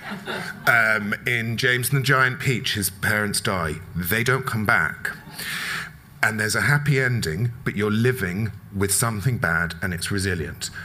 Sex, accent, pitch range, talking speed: male, British, 100-145 Hz, 155 wpm